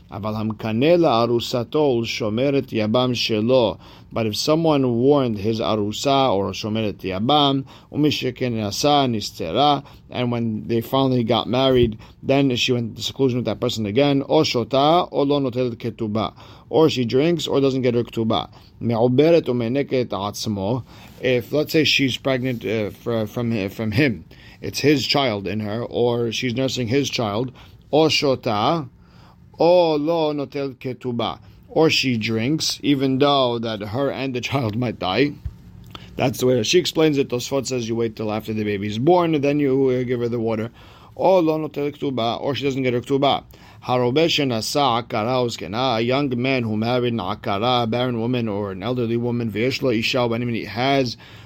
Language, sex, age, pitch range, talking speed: English, male, 50-69, 110-140 Hz, 130 wpm